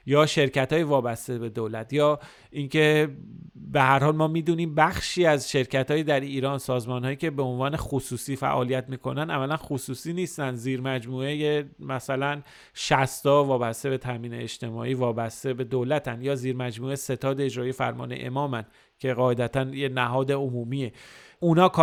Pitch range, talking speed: 130-150 Hz, 135 wpm